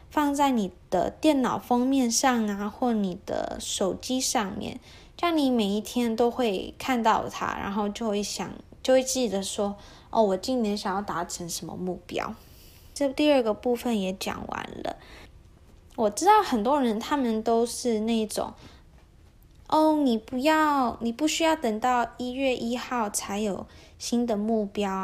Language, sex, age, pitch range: Chinese, female, 10-29, 200-255 Hz